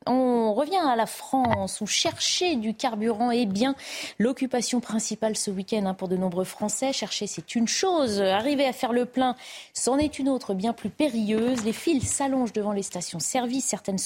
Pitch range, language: 205-260 Hz, French